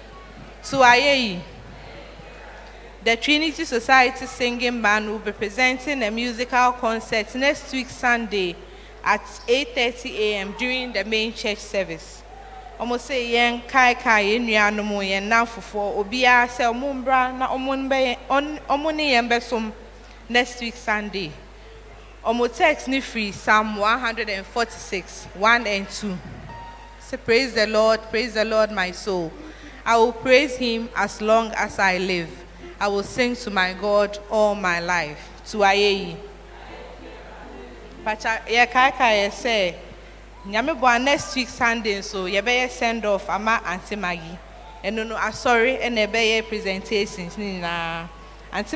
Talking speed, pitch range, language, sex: 135 wpm, 200-245 Hz, English, female